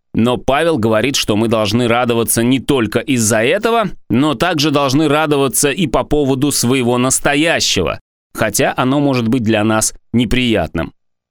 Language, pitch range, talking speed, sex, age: Russian, 105-150 Hz, 145 wpm, male, 30-49